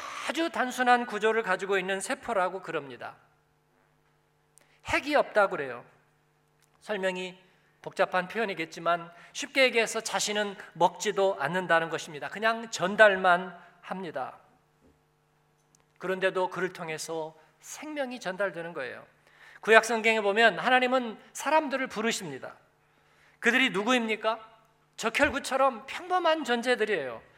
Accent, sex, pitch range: native, male, 195-275 Hz